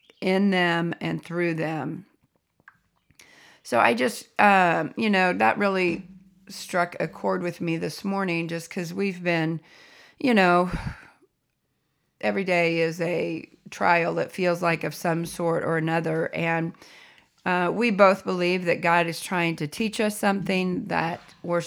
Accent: American